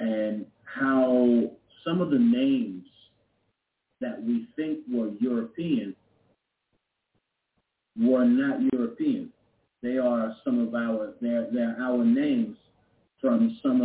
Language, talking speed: English, 110 wpm